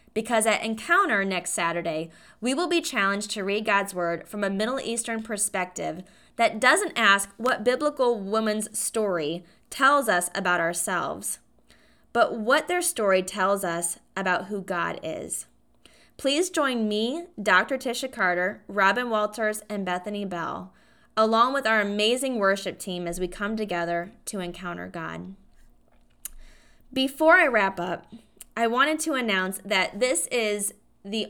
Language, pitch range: English, 185-240 Hz